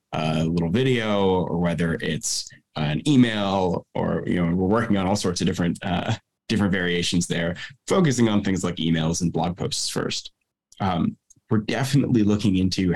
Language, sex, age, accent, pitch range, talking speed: English, male, 20-39, American, 85-105 Hz, 165 wpm